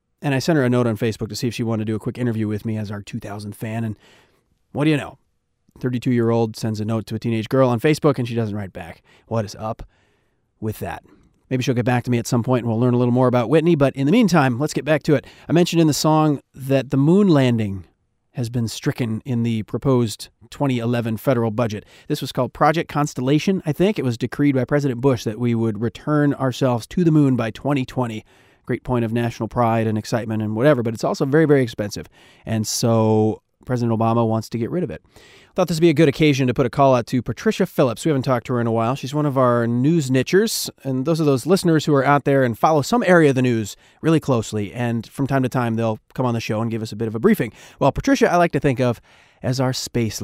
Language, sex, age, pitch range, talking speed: English, male, 30-49, 115-145 Hz, 260 wpm